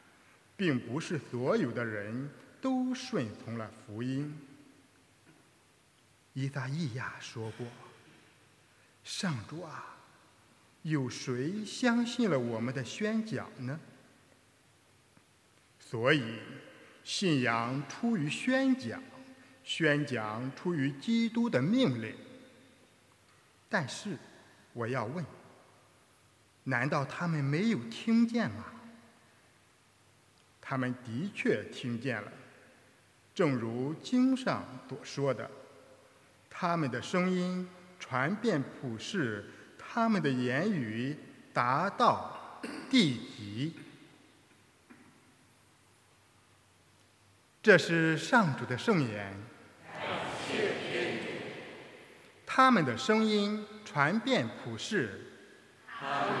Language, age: English, 50-69